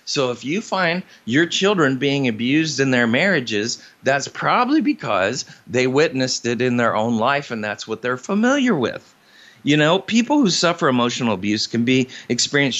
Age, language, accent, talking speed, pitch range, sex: 40-59, English, American, 175 wpm, 125-170 Hz, male